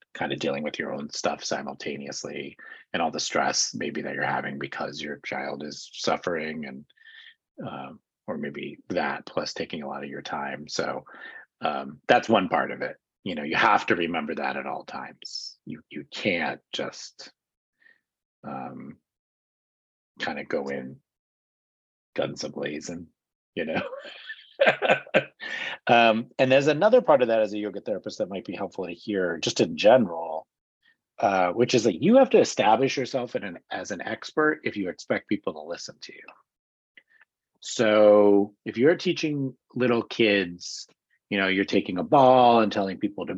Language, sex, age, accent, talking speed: English, male, 30-49, American, 165 wpm